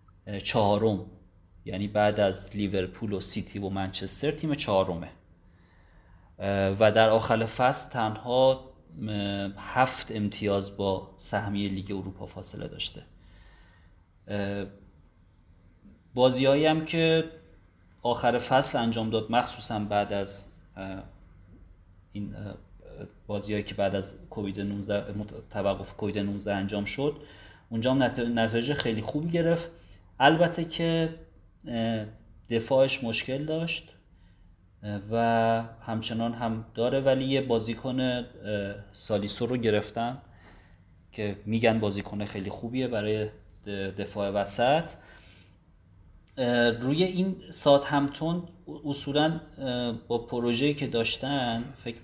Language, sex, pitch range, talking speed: Persian, male, 95-125 Hz, 95 wpm